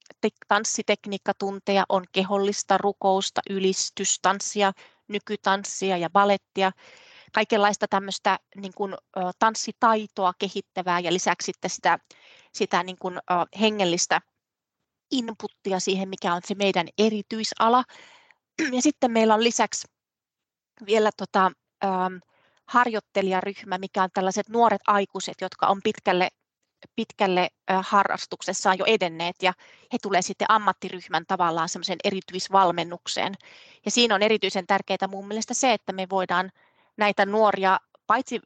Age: 30-49